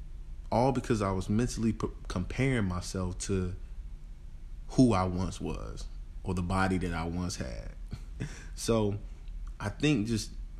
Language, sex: English, male